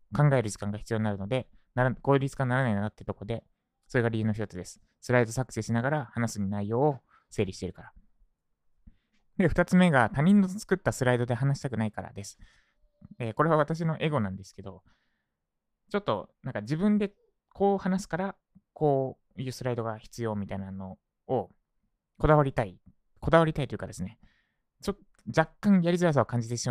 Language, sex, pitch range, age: Japanese, male, 105-155 Hz, 20-39